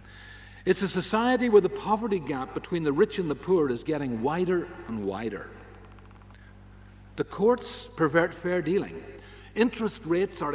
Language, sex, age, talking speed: English, male, 50-69, 150 wpm